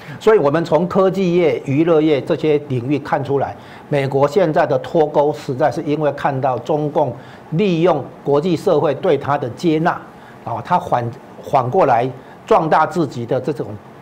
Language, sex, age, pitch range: Chinese, male, 60-79, 125-160 Hz